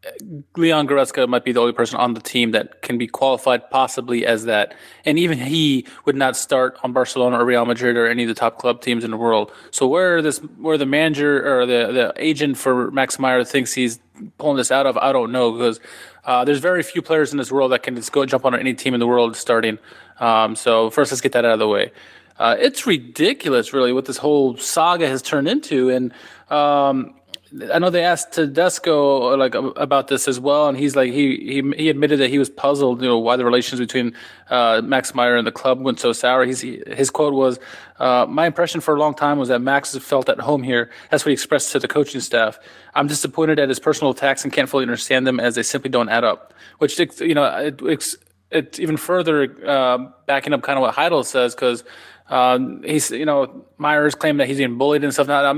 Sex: male